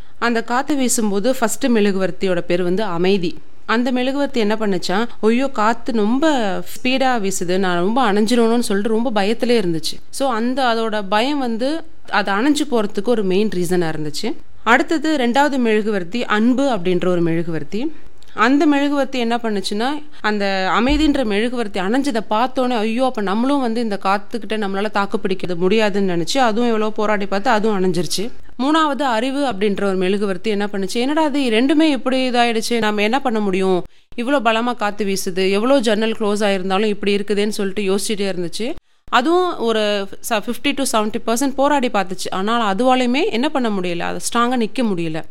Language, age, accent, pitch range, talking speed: Tamil, 30-49, native, 200-255 Hz, 150 wpm